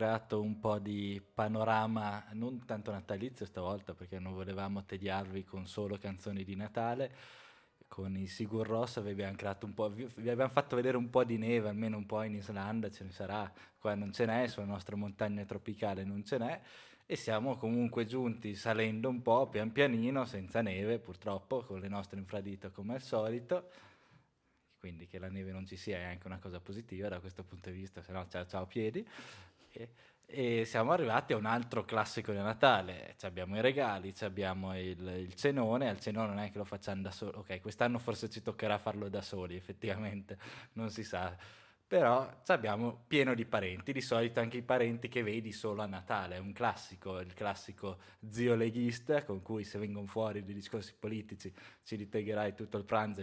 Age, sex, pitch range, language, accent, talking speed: 20-39, male, 100-115 Hz, Italian, native, 185 wpm